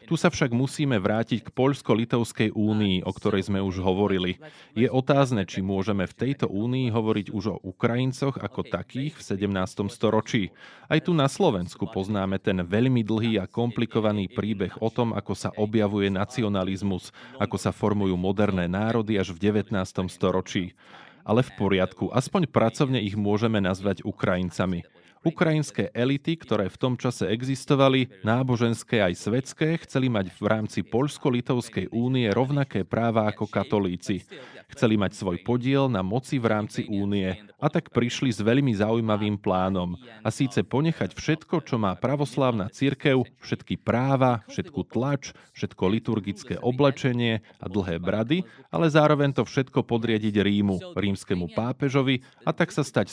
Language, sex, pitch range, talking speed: Slovak, male, 100-130 Hz, 145 wpm